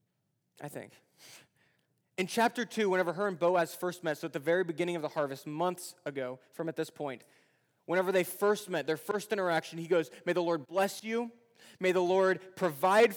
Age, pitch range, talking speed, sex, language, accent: 20-39, 160-230 Hz, 195 wpm, male, English, American